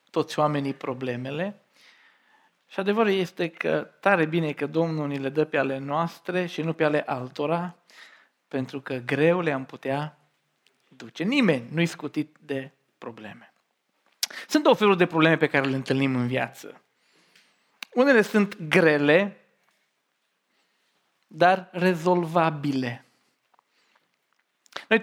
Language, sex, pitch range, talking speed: Romanian, male, 140-185 Hz, 115 wpm